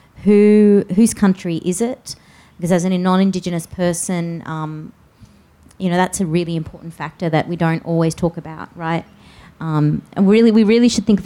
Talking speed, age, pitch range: 175 wpm, 30-49, 160-185 Hz